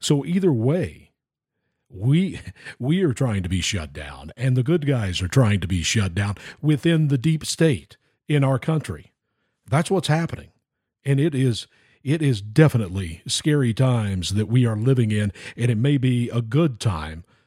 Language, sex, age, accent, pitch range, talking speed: English, male, 50-69, American, 115-145 Hz, 175 wpm